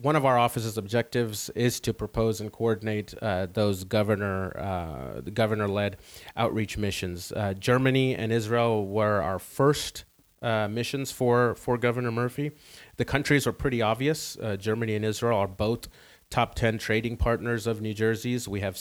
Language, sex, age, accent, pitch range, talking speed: English, male, 30-49, American, 105-120 Hz, 165 wpm